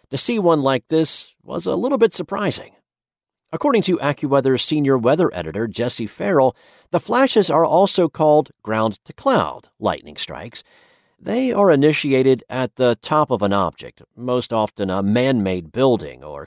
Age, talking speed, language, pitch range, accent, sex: 50-69, 150 wpm, English, 100-150 Hz, American, male